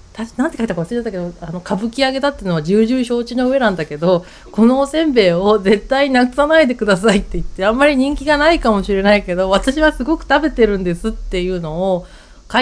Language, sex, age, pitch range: Japanese, female, 30-49, 165-245 Hz